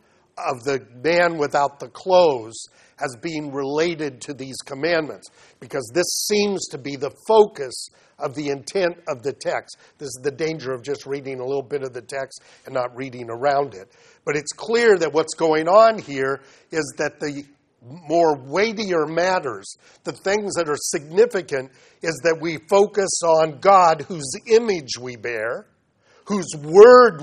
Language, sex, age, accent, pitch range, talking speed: English, male, 50-69, American, 140-180 Hz, 165 wpm